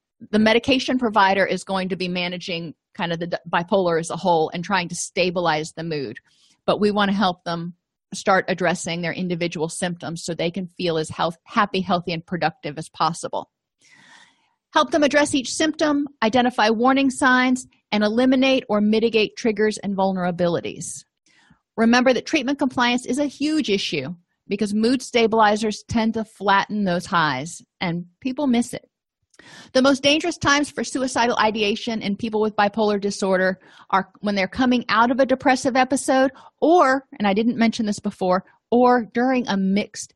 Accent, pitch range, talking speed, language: American, 180-245 Hz, 165 wpm, English